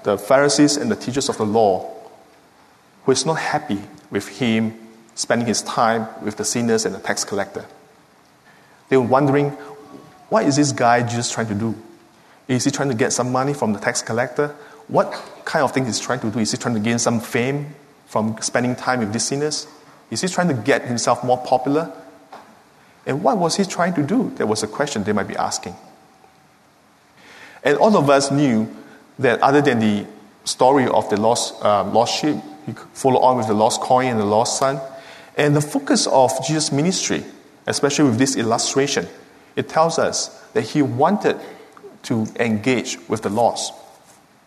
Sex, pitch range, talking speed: male, 120-150 Hz, 190 wpm